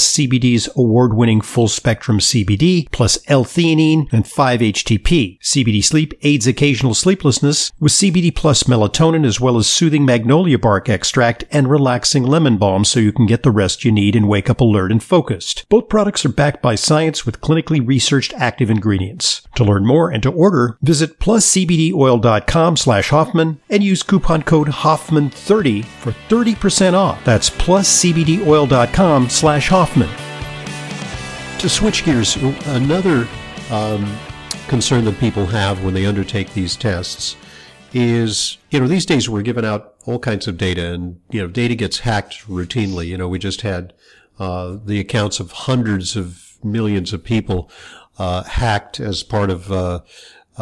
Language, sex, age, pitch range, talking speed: English, male, 50-69, 100-150 Hz, 155 wpm